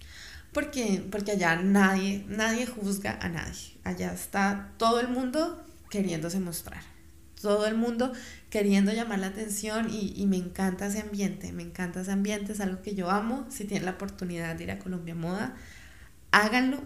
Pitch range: 185-225 Hz